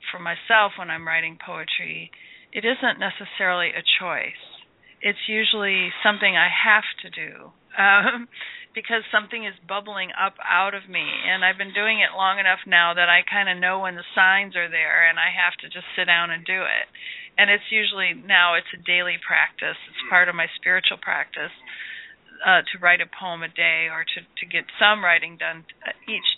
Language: English